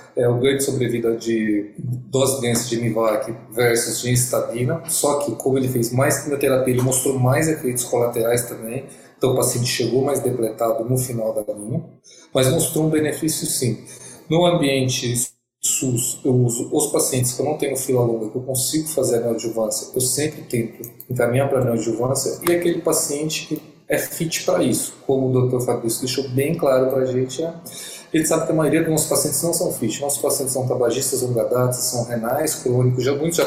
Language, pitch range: Portuguese, 120-140 Hz